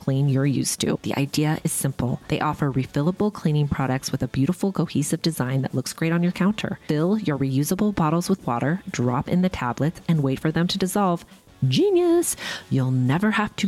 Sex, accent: female, American